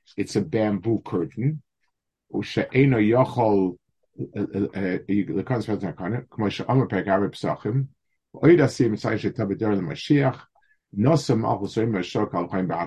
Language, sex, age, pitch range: English, male, 50-69, 95-125 Hz